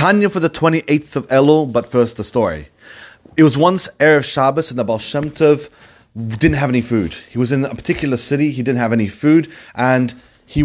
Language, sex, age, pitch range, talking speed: English, male, 30-49, 125-165 Hz, 210 wpm